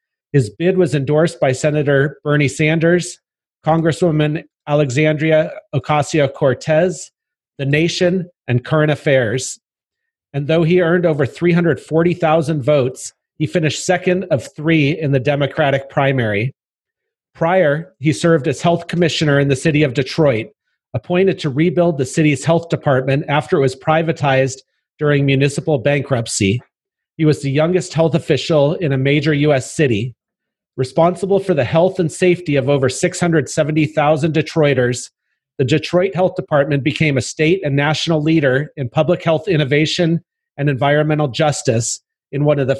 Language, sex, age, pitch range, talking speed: English, male, 40-59, 140-165 Hz, 140 wpm